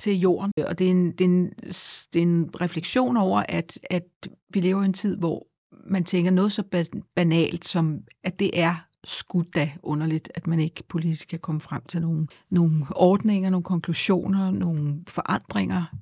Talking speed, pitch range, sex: 180 wpm, 170-195 Hz, female